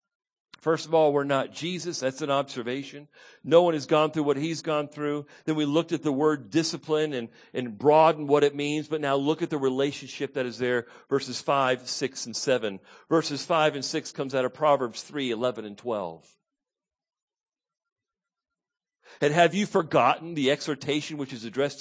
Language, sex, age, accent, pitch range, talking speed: English, male, 50-69, American, 140-195 Hz, 180 wpm